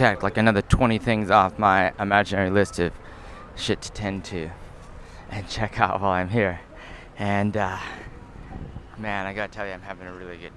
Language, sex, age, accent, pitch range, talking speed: English, male, 20-39, American, 100-145 Hz, 175 wpm